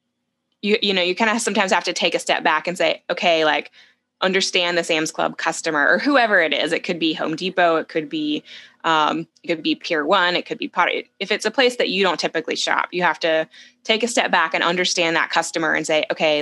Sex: female